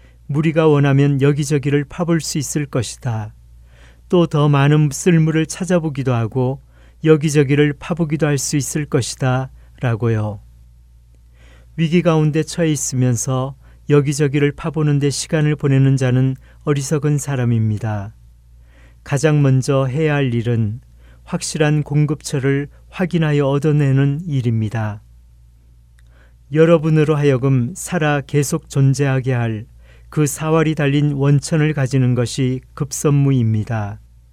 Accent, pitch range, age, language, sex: native, 110-150 Hz, 40-59, Korean, male